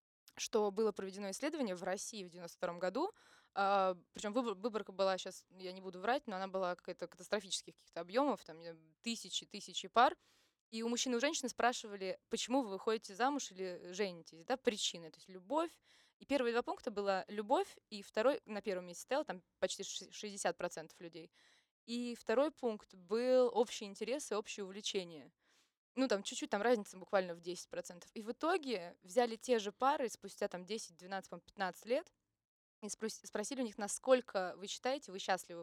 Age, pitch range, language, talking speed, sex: 20-39, 185-235 Hz, Russian, 170 wpm, female